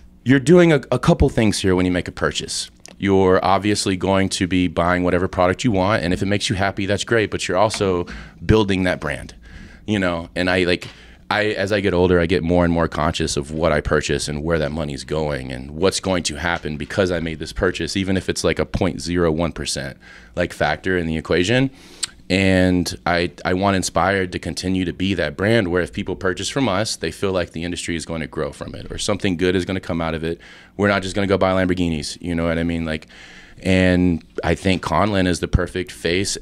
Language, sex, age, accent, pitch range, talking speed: English, male, 30-49, American, 85-100 Hz, 230 wpm